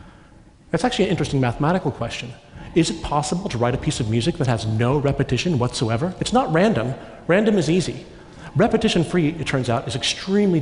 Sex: male